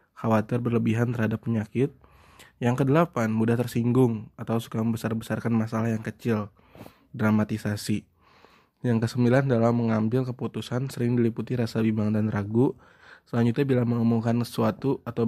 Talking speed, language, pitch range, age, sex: 120 wpm, Indonesian, 110-120 Hz, 20-39, male